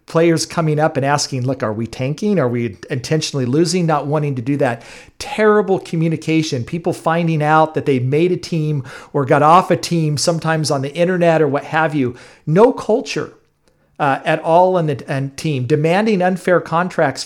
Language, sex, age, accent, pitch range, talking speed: English, male, 40-59, American, 140-180 Hz, 185 wpm